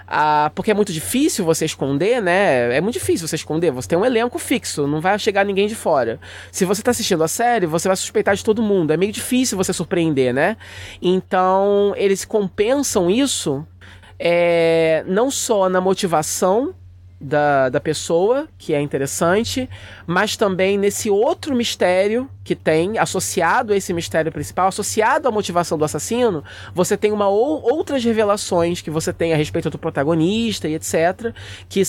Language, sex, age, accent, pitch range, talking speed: Portuguese, male, 20-39, Brazilian, 160-210 Hz, 165 wpm